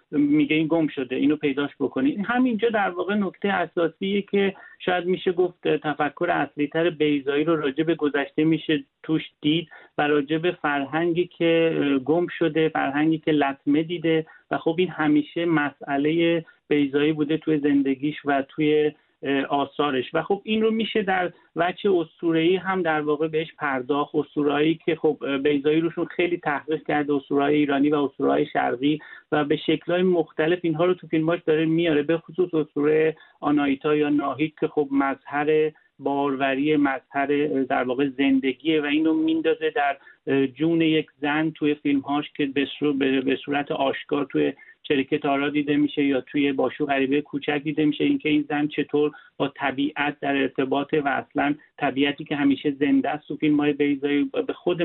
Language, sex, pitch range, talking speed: Persian, male, 145-160 Hz, 160 wpm